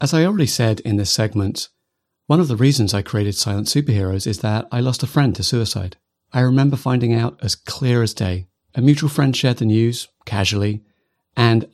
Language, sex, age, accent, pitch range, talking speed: English, male, 40-59, British, 100-130 Hz, 200 wpm